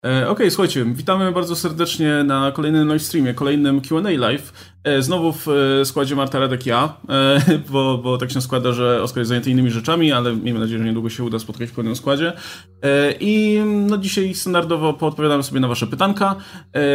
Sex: male